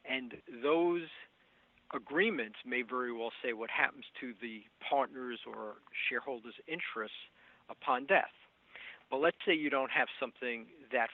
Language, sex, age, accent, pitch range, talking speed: English, male, 50-69, American, 120-140 Hz, 135 wpm